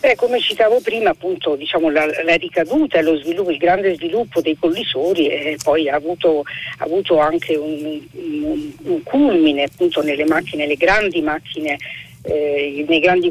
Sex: female